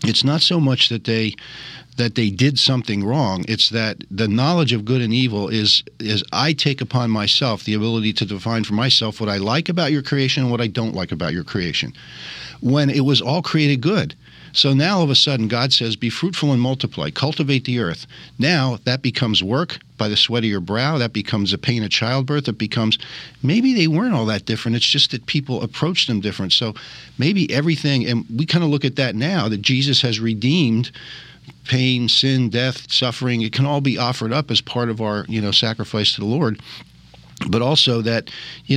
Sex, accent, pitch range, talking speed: male, American, 110-145 Hz, 210 wpm